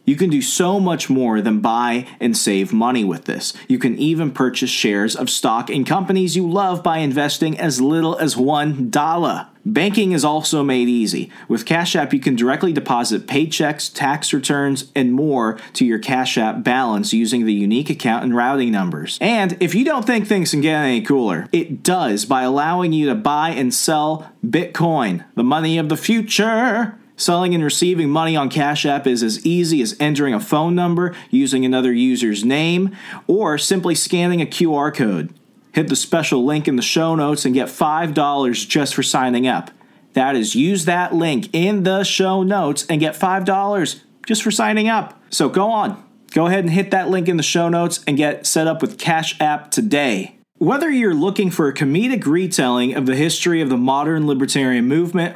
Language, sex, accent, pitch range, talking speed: English, male, American, 135-185 Hz, 190 wpm